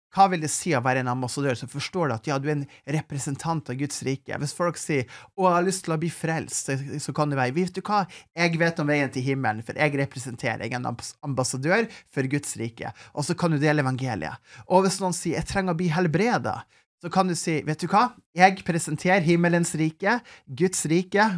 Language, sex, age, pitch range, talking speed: English, male, 30-49, 130-175 Hz, 230 wpm